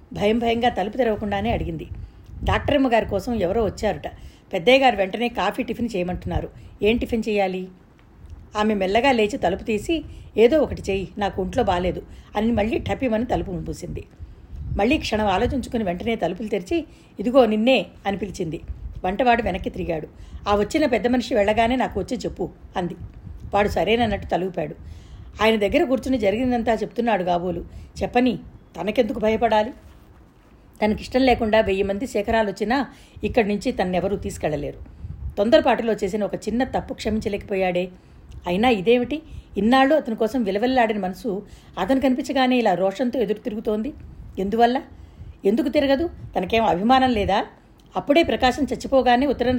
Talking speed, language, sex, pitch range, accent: 125 wpm, Telugu, female, 195-250 Hz, native